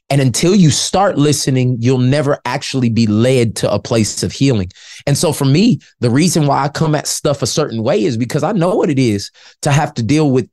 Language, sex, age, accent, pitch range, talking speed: English, male, 20-39, American, 120-160 Hz, 235 wpm